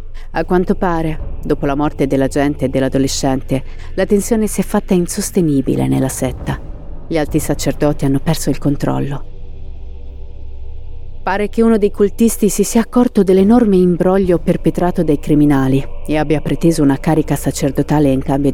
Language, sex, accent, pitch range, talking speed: Italian, female, native, 130-175 Hz, 150 wpm